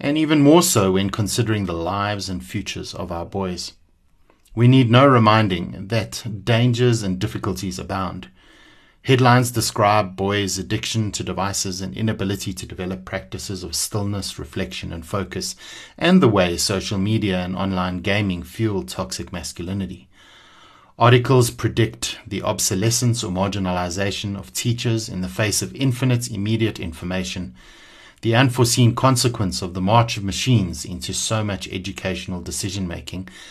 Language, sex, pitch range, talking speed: English, male, 95-110 Hz, 140 wpm